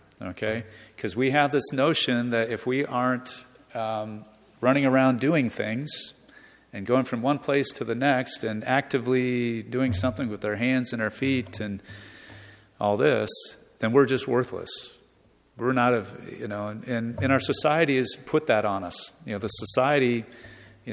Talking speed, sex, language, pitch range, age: 165 wpm, male, English, 105-130 Hz, 40-59